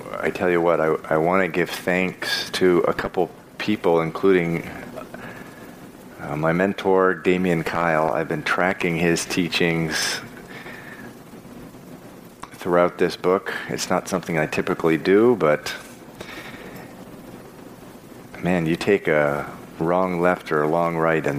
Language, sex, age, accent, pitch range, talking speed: English, male, 40-59, American, 75-90 Hz, 130 wpm